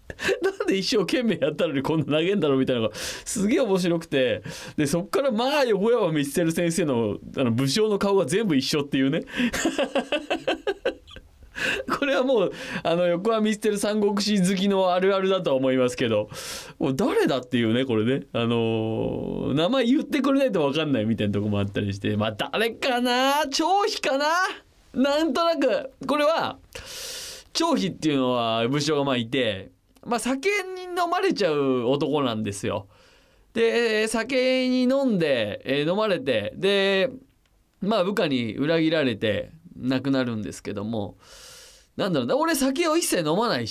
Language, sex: Japanese, male